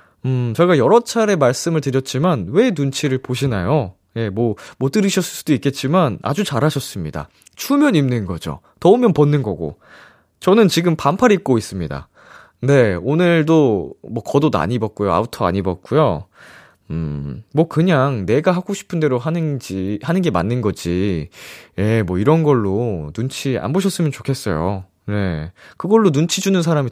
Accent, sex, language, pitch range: native, male, Korean, 105-170 Hz